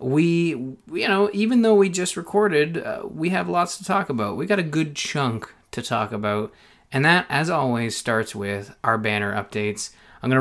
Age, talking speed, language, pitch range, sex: 20-39, 195 wpm, English, 110-140 Hz, male